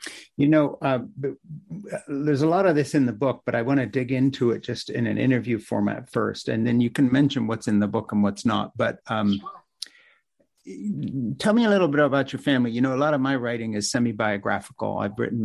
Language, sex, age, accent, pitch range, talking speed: English, male, 50-69, American, 110-140 Hz, 225 wpm